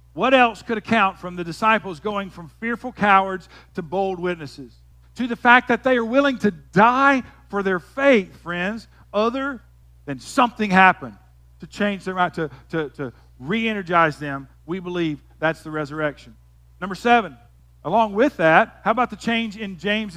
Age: 50-69